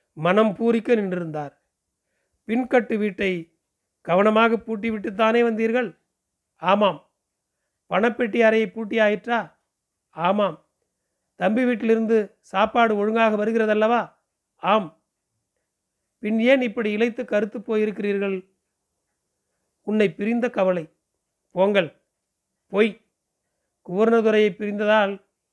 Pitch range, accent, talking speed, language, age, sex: 190-225 Hz, native, 75 wpm, Tamil, 40-59, male